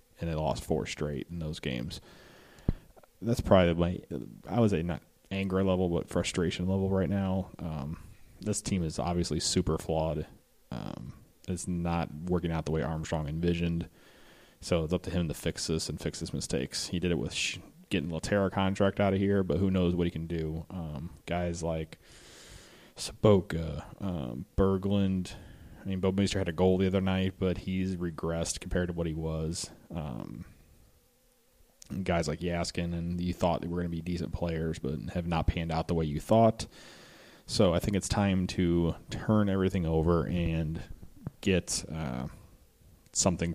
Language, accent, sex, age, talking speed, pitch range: English, American, male, 30-49, 175 wpm, 80-95 Hz